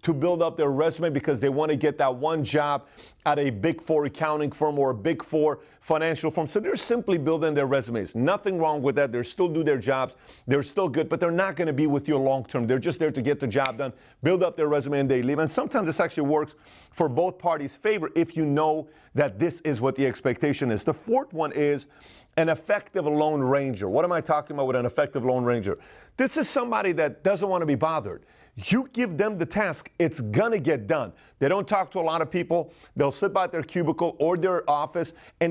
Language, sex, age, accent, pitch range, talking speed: English, male, 40-59, American, 145-175 Hz, 240 wpm